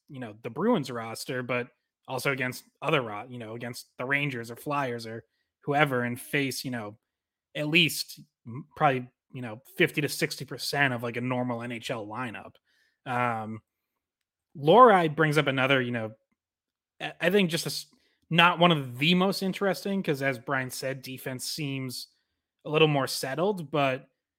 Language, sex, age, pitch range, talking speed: English, male, 20-39, 125-155 Hz, 160 wpm